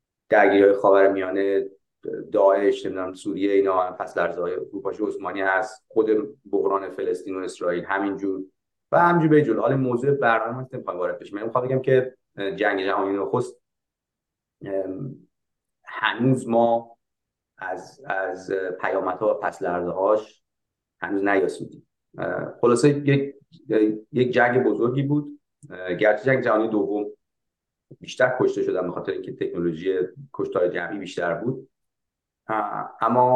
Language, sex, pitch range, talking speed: Persian, male, 100-145 Hz, 115 wpm